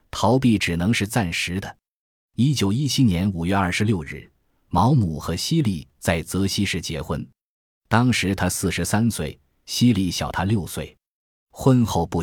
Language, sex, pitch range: Chinese, male, 85-115 Hz